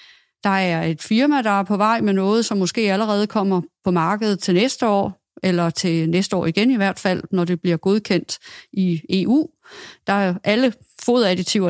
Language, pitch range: Danish, 175-210 Hz